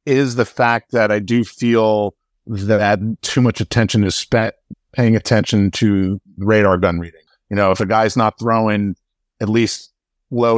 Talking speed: 165 wpm